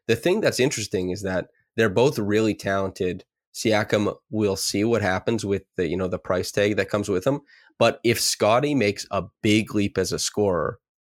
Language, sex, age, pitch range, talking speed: English, male, 20-39, 95-115 Hz, 195 wpm